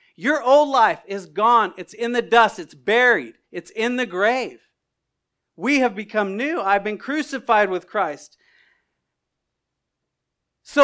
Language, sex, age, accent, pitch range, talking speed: English, male, 40-59, American, 195-270 Hz, 140 wpm